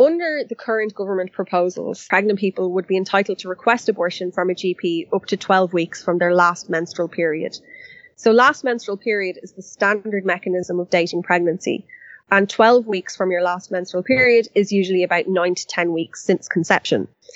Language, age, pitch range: English, 20-39, 180-210 Hz